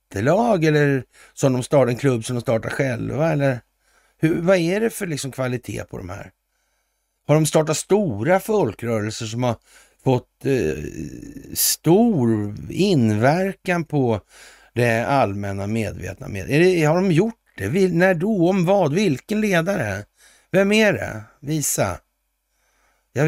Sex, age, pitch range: male, 60-79, 105-155 Hz